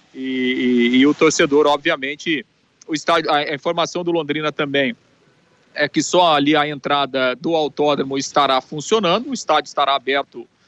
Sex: male